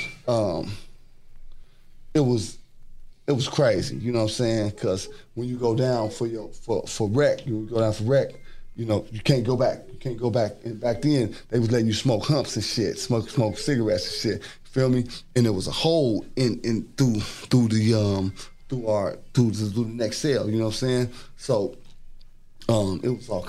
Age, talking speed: 30-49, 210 wpm